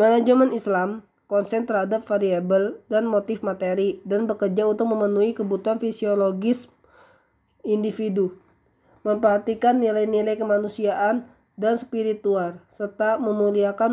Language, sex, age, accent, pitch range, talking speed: Indonesian, female, 20-39, native, 205-225 Hz, 95 wpm